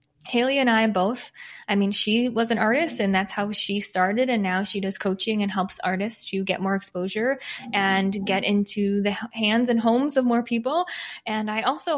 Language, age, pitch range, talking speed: English, 10-29, 205-250 Hz, 200 wpm